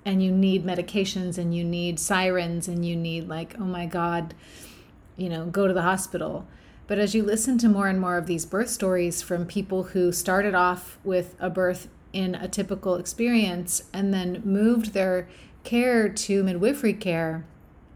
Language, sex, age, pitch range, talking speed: English, female, 30-49, 175-205 Hz, 175 wpm